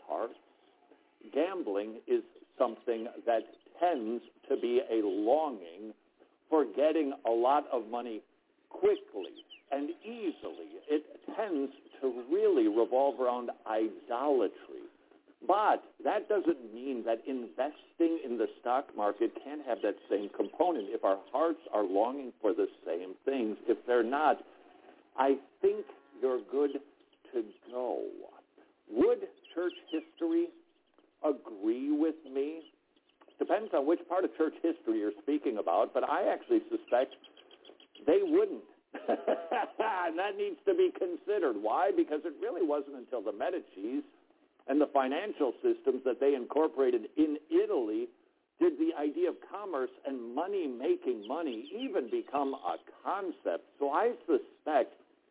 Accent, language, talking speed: American, English, 130 wpm